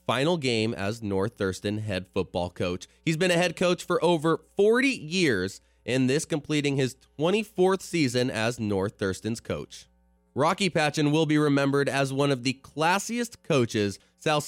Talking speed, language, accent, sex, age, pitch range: 160 wpm, English, American, male, 20-39, 115-175 Hz